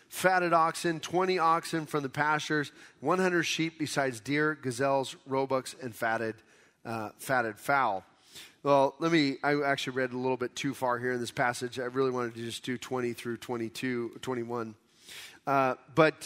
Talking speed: 165 wpm